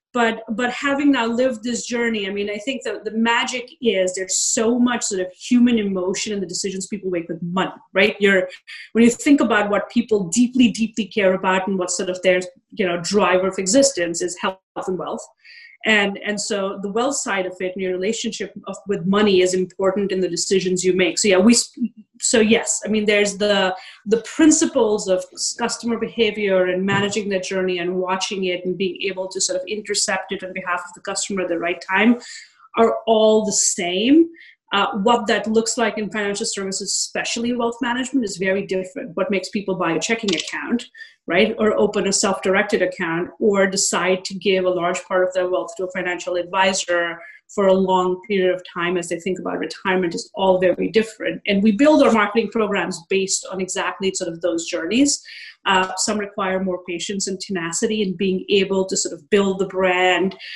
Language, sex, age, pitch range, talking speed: English, female, 30-49, 185-225 Hz, 200 wpm